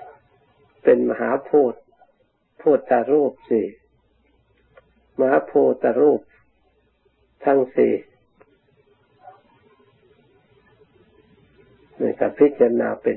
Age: 60-79